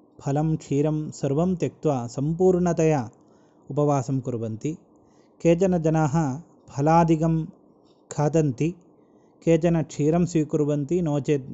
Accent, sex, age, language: native, male, 20-39, Malayalam